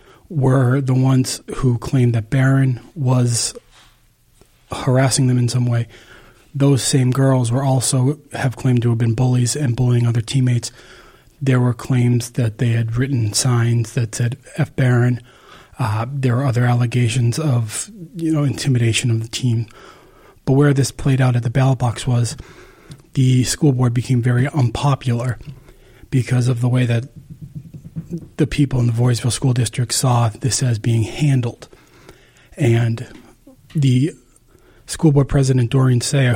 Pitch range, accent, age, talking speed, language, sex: 120-135 Hz, American, 30-49, 150 wpm, English, male